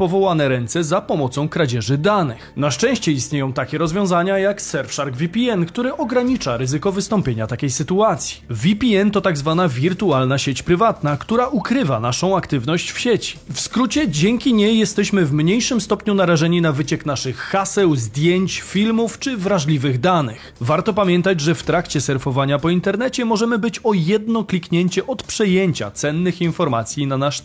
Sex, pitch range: male, 145-195 Hz